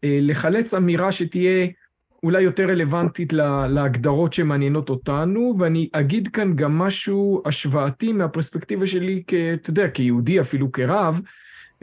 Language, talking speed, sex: Hebrew, 120 wpm, male